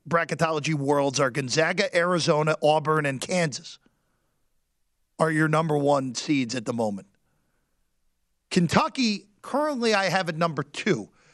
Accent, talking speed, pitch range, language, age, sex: American, 120 wpm, 150-225 Hz, English, 40-59, male